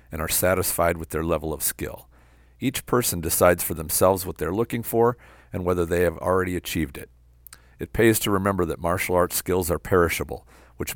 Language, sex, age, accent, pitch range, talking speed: English, male, 50-69, American, 75-95 Hz, 190 wpm